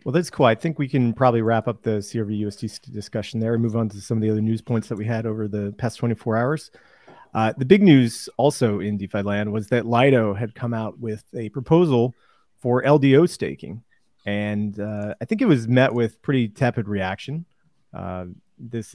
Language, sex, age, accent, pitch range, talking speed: English, male, 30-49, American, 105-135 Hz, 205 wpm